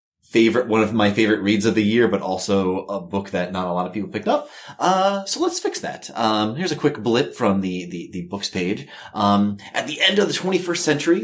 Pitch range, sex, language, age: 100-155 Hz, male, English, 30-49